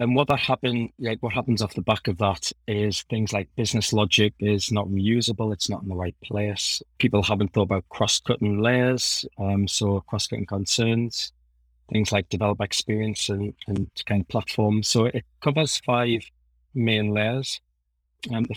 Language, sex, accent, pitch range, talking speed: English, male, British, 95-115 Hz, 180 wpm